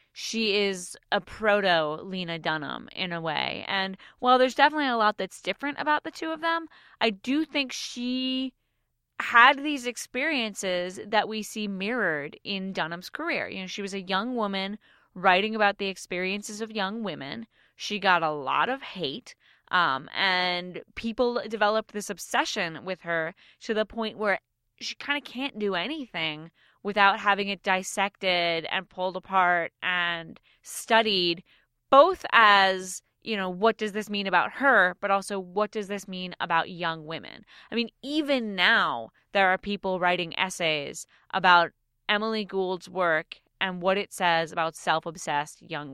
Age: 20-39